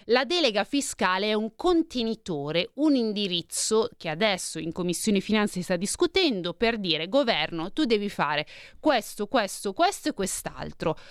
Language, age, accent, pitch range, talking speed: Italian, 20-39, native, 180-260 Hz, 145 wpm